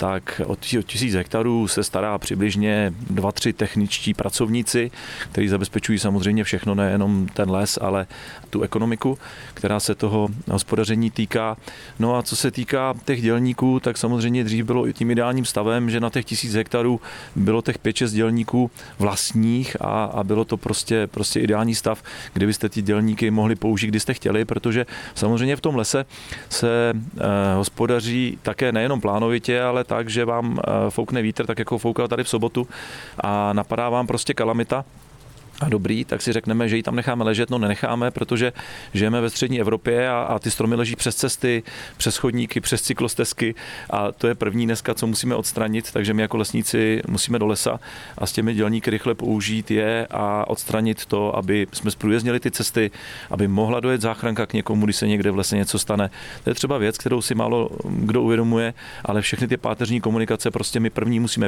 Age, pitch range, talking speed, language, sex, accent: 40-59, 105-120 Hz, 180 wpm, Czech, male, native